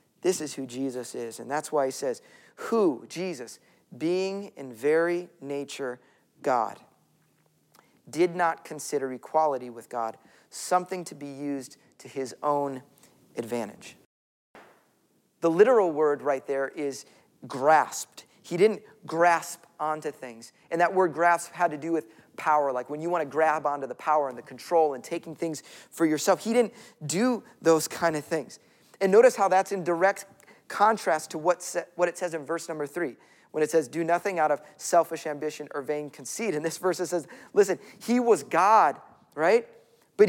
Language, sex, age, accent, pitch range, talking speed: English, male, 30-49, American, 145-180 Hz, 170 wpm